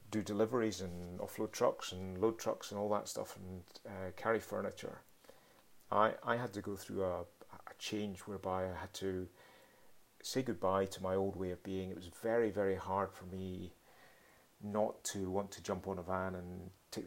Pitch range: 95-100 Hz